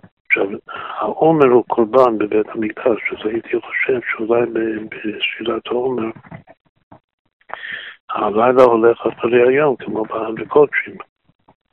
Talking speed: 90 wpm